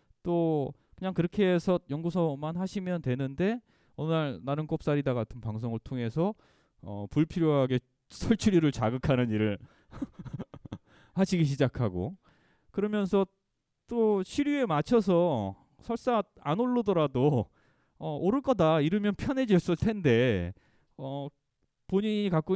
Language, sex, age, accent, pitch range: Korean, male, 20-39, native, 120-180 Hz